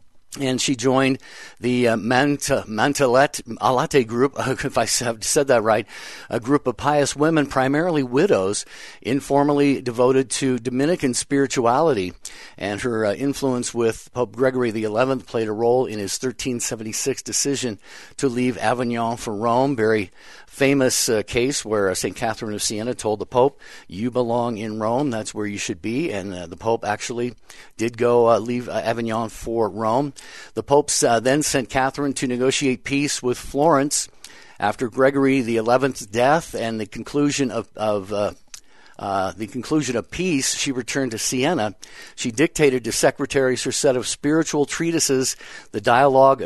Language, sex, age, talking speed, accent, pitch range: English, male, 50-69, 160 wpm, American, 115-135 Hz